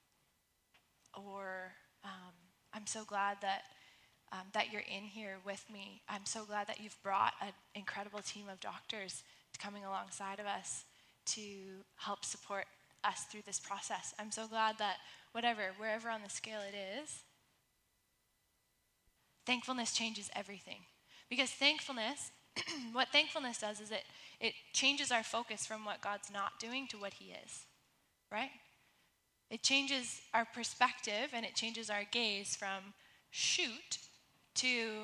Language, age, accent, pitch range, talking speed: English, 10-29, American, 200-230 Hz, 140 wpm